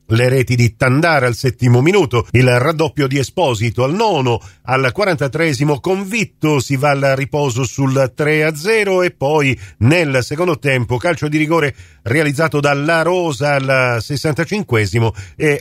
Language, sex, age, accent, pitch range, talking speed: Italian, male, 50-69, native, 125-175 Hz, 140 wpm